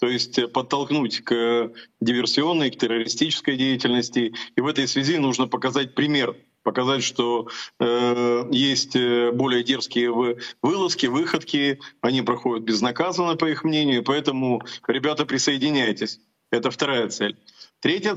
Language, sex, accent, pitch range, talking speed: Russian, male, native, 120-145 Hz, 120 wpm